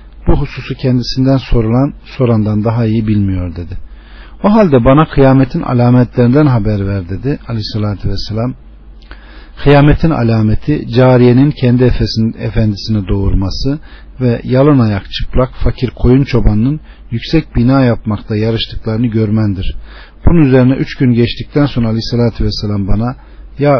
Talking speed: 120 wpm